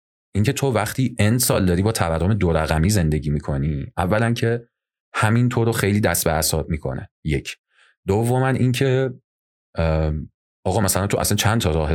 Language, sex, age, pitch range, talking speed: Persian, male, 30-49, 80-105 Hz, 165 wpm